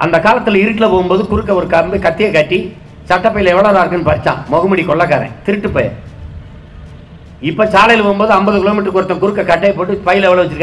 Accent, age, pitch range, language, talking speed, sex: native, 50-69, 145-210 Hz, Tamil, 130 wpm, male